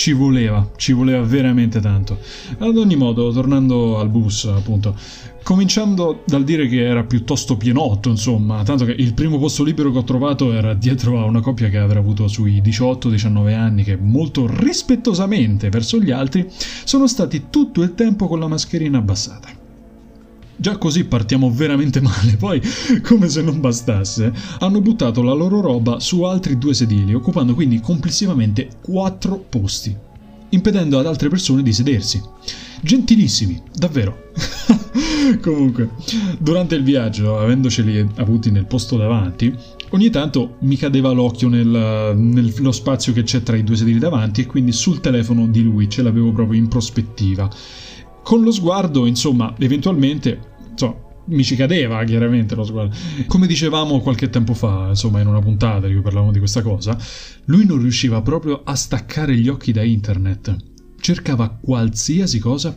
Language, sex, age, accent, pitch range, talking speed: Italian, male, 30-49, native, 115-155 Hz, 155 wpm